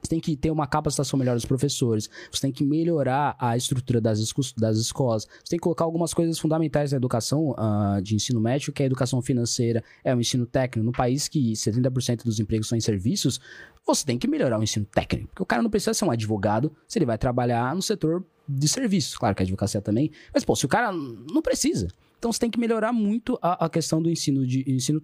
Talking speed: 235 wpm